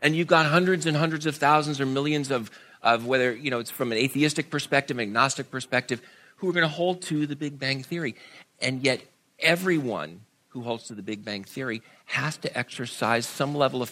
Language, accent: English, American